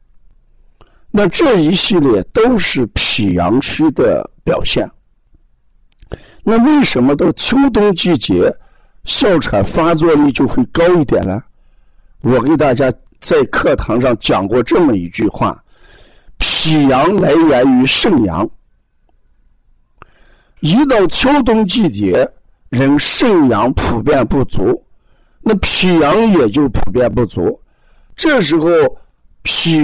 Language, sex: Chinese, male